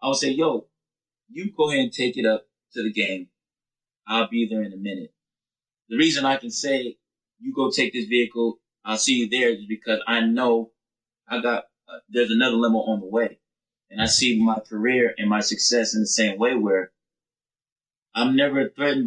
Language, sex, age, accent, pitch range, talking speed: English, male, 20-39, American, 115-155 Hz, 195 wpm